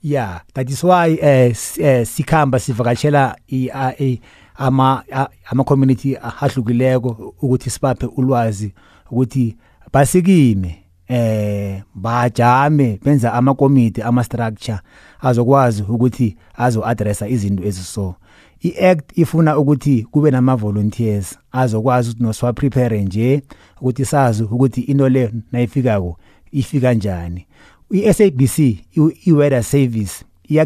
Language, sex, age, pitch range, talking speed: English, male, 30-49, 115-140 Hz, 115 wpm